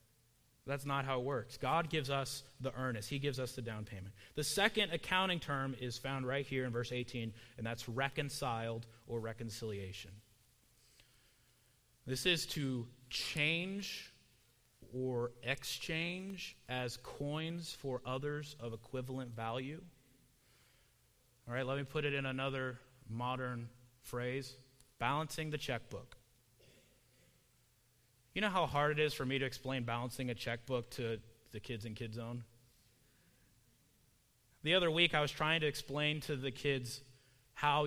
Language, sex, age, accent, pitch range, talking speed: English, male, 30-49, American, 120-140 Hz, 140 wpm